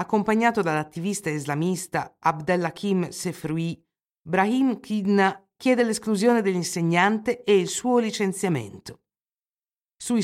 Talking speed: 90 wpm